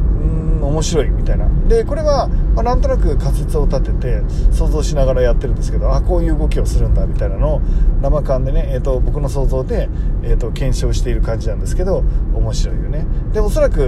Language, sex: Japanese, male